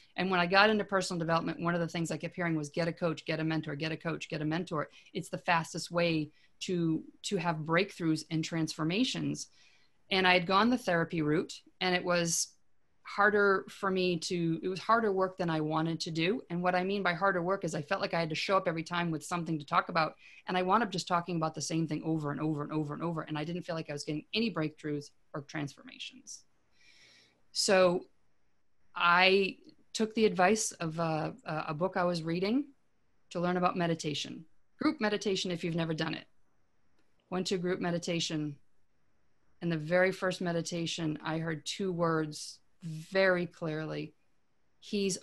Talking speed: 200 wpm